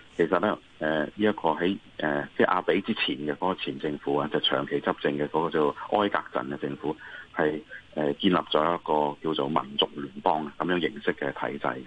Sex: male